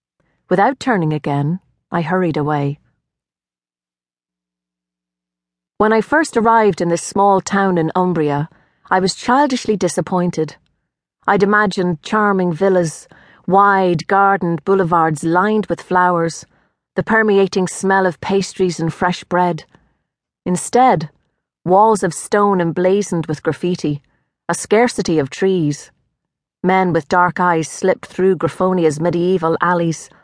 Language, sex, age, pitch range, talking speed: English, female, 30-49, 160-195 Hz, 115 wpm